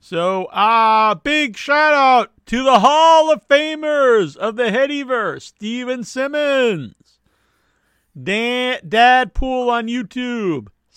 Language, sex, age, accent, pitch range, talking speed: English, male, 50-69, American, 175-250 Hz, 105 wpm